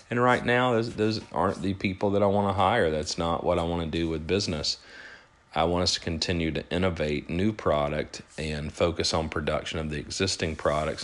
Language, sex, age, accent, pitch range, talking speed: English, male, 40-59, American, 85-110 Hz, 210 wpm